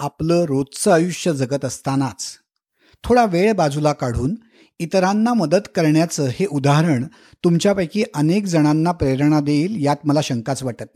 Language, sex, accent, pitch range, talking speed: Marathi, male, native, 145-195 Hz, 125 wpm